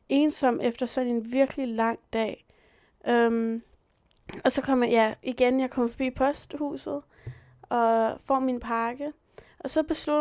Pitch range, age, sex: 225-275 Hz, 20-39, female